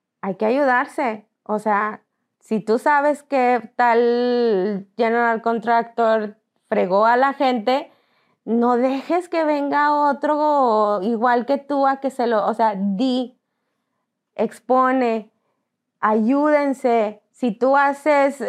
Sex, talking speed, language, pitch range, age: female, 115 wpm, English, 215-255 Hz, 20-39